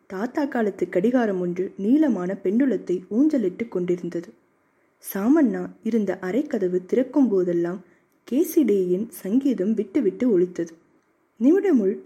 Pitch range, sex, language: 190-265 Hz, female, Tamil